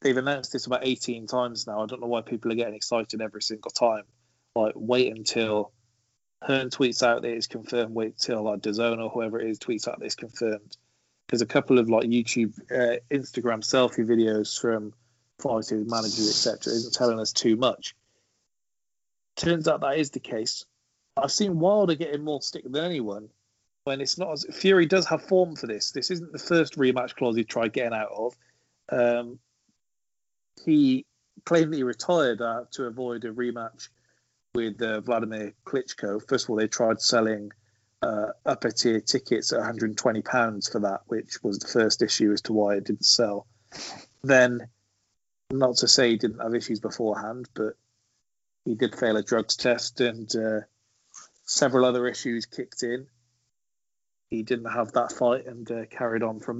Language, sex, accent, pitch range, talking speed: English, male, British, 110-125 Hz, 175 wpm